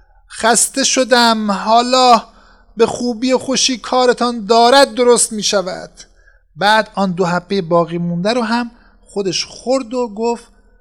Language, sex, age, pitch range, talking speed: Persian, male, 50-69, 195-235 Hz, 135 wpm